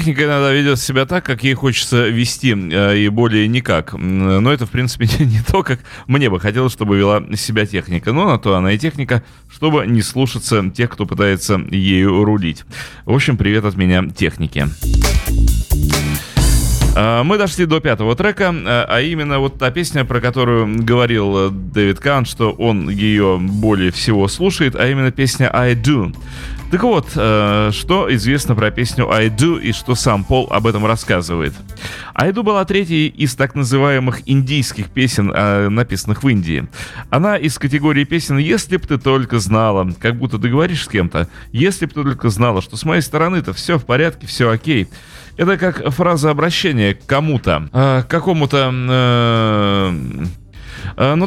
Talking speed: 165 wpm